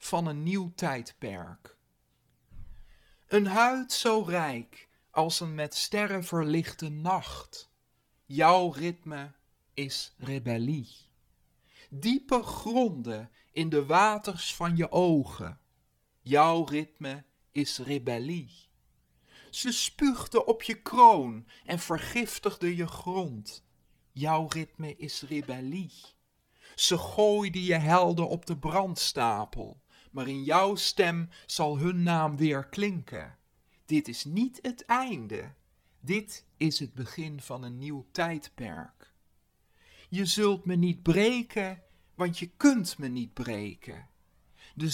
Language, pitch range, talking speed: Dutch, 135-190 Hz, 110 wpm